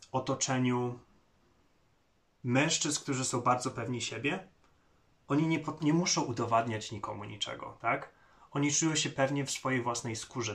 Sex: male